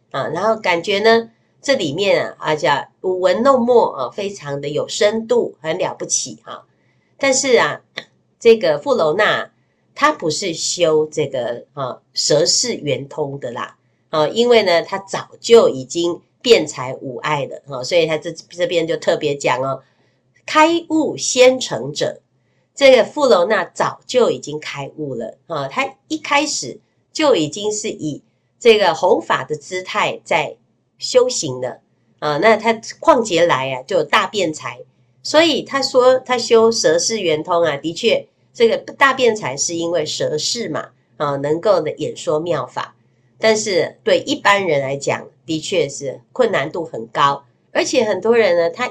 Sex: female